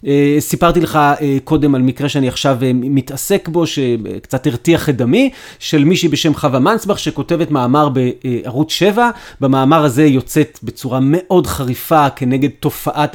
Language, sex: Hebrew, male